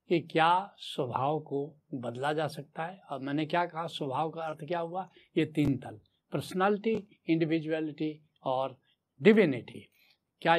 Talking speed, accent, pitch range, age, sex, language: 140 wpm, native, 145-205 Hz, 70-89, male, Hindi